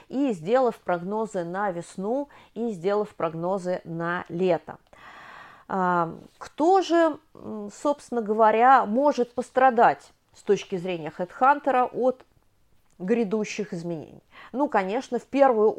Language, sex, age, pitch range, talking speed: Russian, female, 30-49, 180-260 Hz, 105 wpm